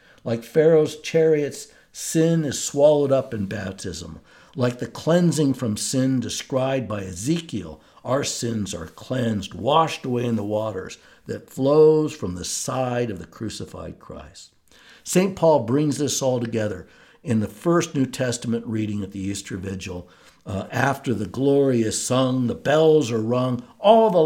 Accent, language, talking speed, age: American, English, 155 wpm, 60-79